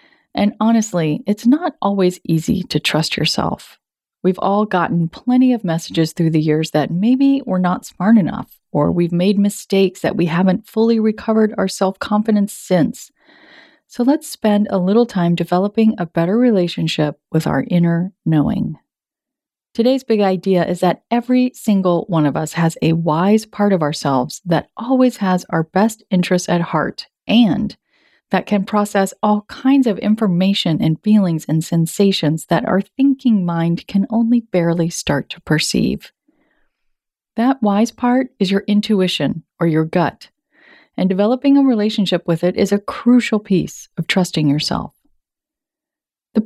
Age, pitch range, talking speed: 30-49, 175-235 Hz, 155 wpm